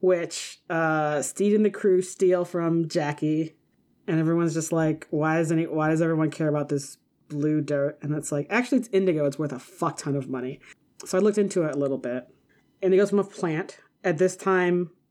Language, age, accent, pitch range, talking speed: English, 30-49, American, 150-185 Hz, 215 wpm